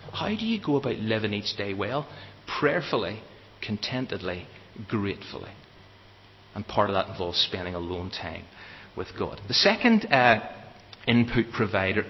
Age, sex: 40-59, male